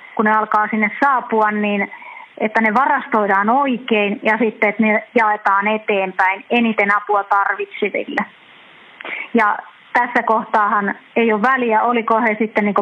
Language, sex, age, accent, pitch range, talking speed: Finnish, female, 30-49, native, 205-235 Hz, 135 wpm